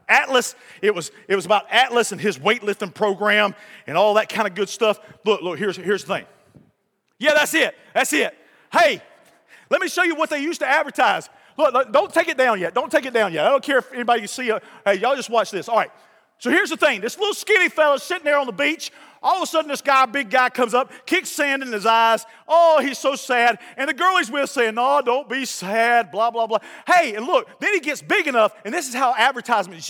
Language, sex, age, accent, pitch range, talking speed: English, male, 40-59, American, 215-325 Hz, 250 wpm